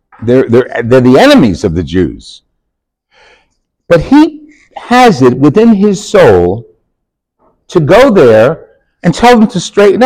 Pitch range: 100-160 Hz